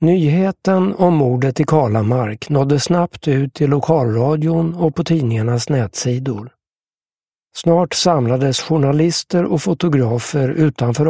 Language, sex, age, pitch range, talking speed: English, male, 60-79, 135-165 Hz, 110 wpm